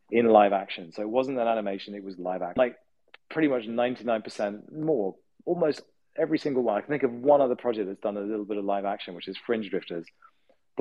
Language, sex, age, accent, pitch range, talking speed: English, male, 30-49, British, 95-120 Hz, 230 wpm